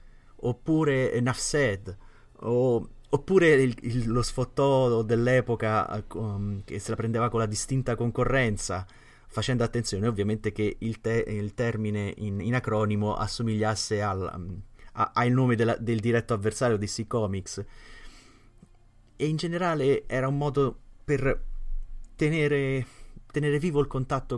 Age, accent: 30-49, native